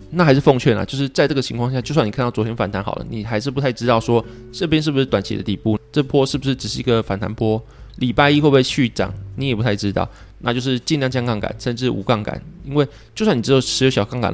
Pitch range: 110-135 Hz